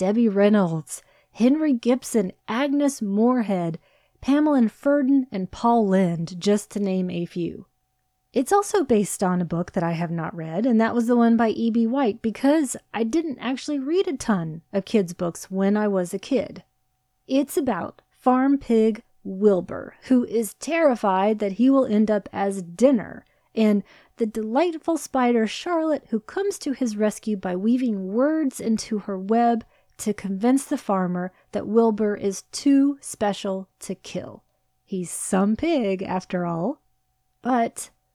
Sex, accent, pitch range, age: female, American, 190-255 Hz, 30-49